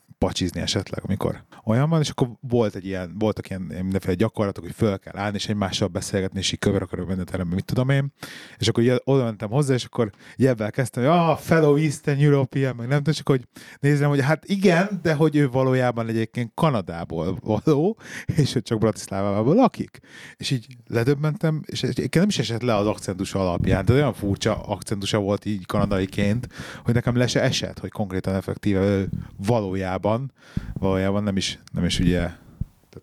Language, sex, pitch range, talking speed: Hungarian, male, 100-135 Hz, 180 wpm